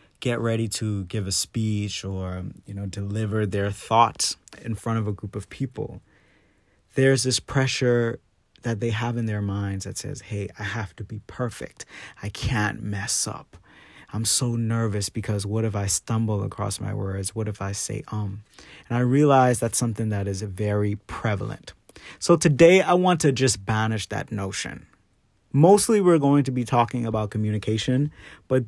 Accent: American